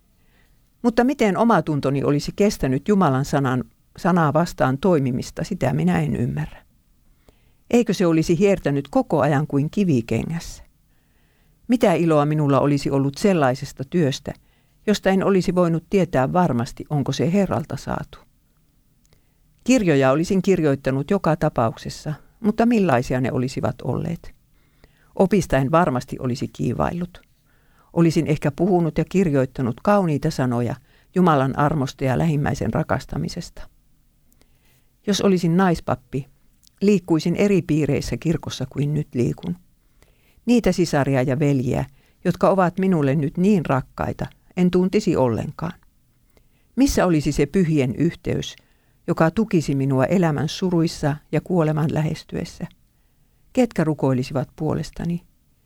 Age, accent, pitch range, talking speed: 50-69, native, 135-180 Hz, 110 wpm